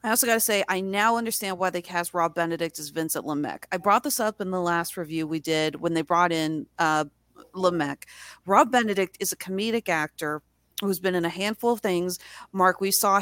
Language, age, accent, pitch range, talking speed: English, 40-59, American, 170-215 Hz, 220 wpm